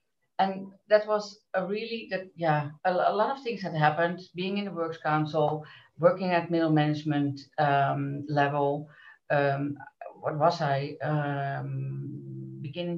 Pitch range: 150-180 Hz